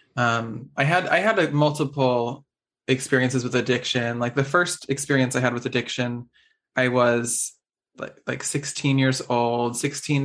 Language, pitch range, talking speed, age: English, 120-140 Hz, 150 wpm, 20-39